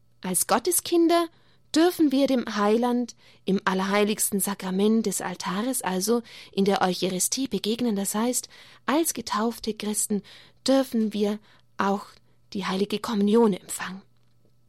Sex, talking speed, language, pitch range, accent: female, 115 wpm, German, 190-250 Hz, German